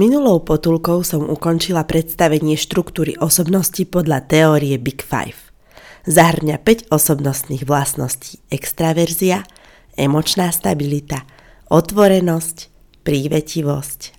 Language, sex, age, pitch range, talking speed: Slovak, female, 30-49, 145-180 Hz, 85 wpm